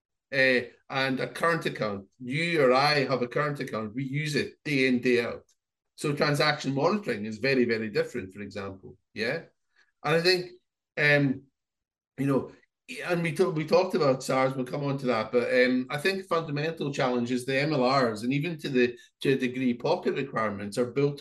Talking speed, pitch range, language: 185 wpm, 125-145 Hz, English